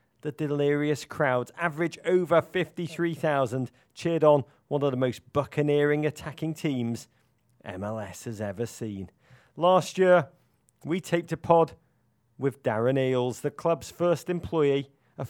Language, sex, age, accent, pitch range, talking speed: English, male, 30-49, British, 125-165 Hz, 130 wpm